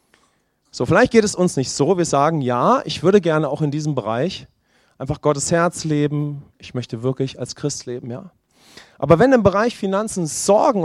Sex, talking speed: male, 190 wpm